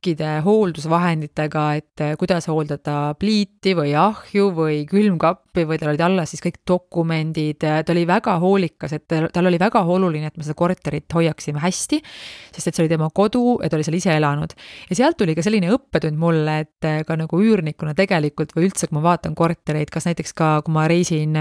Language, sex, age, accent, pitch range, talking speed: English, female, 30-49, Finnish, 155-185 Hz, 190 wpm